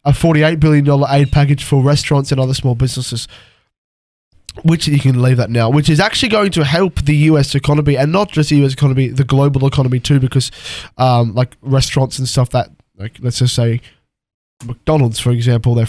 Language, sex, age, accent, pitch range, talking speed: English, male, 10-29, Australian, 115-145 Hz, 195 wpm